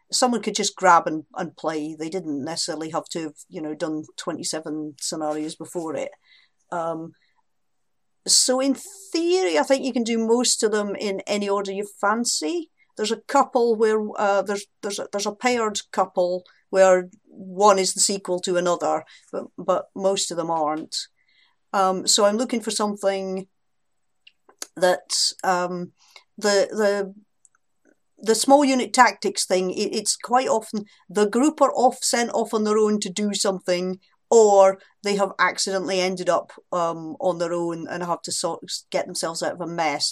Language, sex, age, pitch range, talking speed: English, female, 50-69, 165-210 Hz, 170 wpm